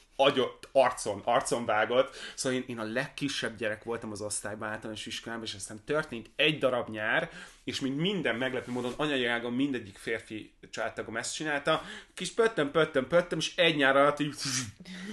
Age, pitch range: 30-49, 110-145 Hz